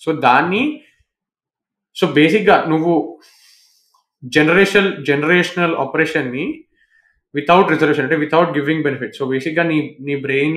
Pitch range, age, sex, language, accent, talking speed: 155-205 Hz, 20-39, male, Telugu, native, 120 wpm